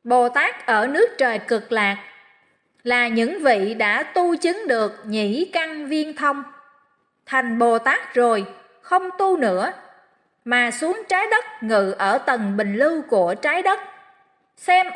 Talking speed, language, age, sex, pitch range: 145 wpm, Vietnamese, 20-39, female, 235-355 Hz